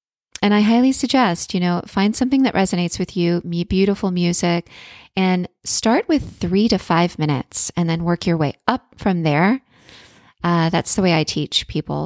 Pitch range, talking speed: 170-220 Hz, 185 wpm